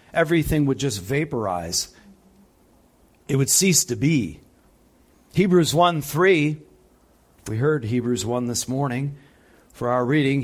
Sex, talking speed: male, 115 wpm